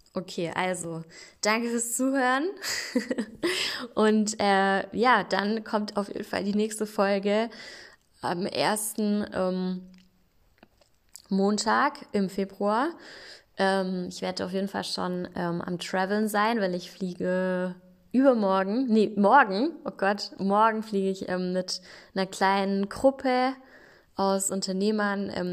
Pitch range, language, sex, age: 185-215 Hz, German, female, 20-39